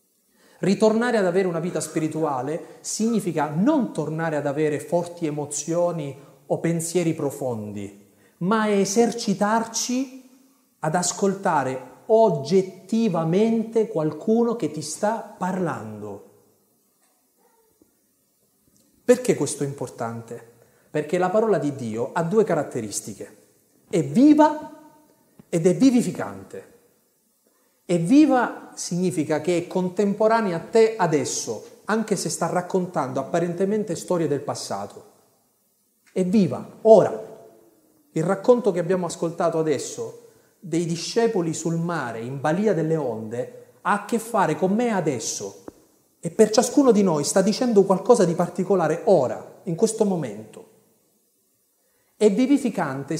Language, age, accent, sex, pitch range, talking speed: Italian, 40-59, native, male, 155-225 Hz, 115 wpm